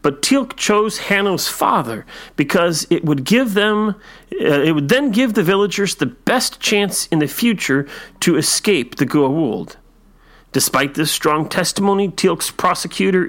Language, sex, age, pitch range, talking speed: English, male, 40-59, 140-205 Hz, 150 wpm